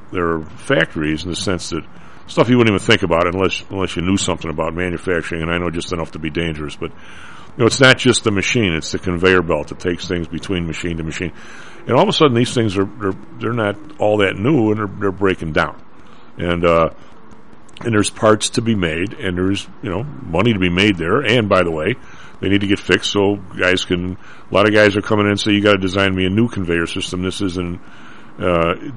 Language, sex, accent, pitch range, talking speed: English, male, American, 90-110 Hz, 240 wpm